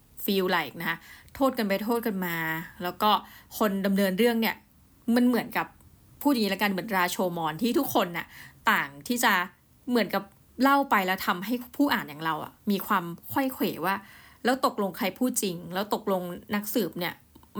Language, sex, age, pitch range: Thai, female, 20-39, 185-235 Hz